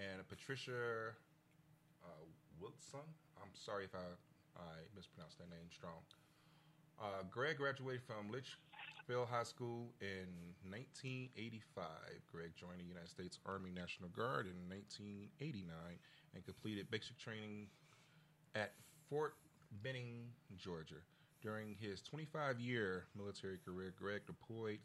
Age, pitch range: 30-49, 95-145 Hz